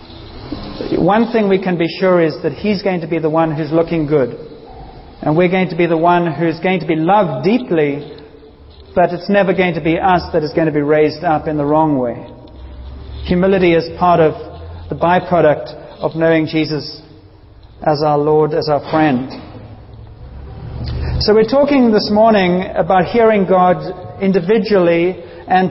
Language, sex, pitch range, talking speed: English, male, 155-205 Hz, 170 wpm